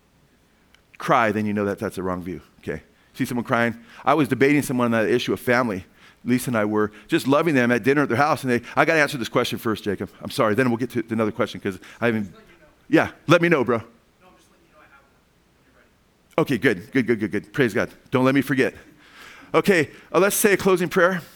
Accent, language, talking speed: American, English, 220 wpm